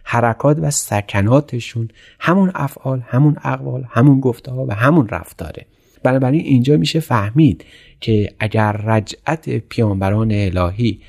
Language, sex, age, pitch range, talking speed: Persian, male, 30-49, 105-130 Hz, 115 wpm